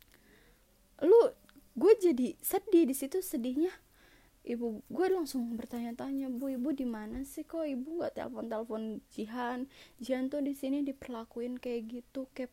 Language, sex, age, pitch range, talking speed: Indonesian, female, 20-39, 220-270 Hz, 140 wpm